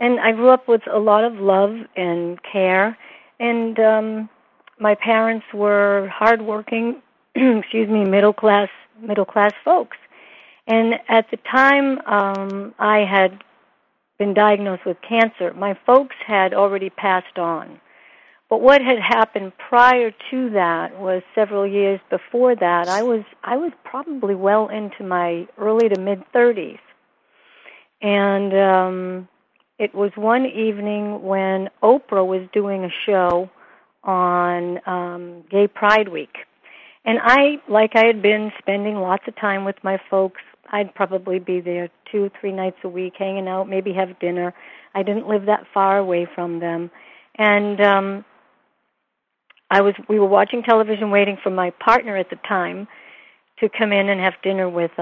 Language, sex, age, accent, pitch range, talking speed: English, female, 50-69, American, 190-225 Hz, 150 wpm